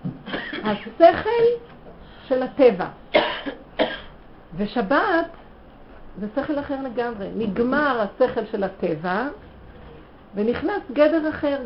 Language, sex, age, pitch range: Hebrew, female, 50-69, 215-295 Hz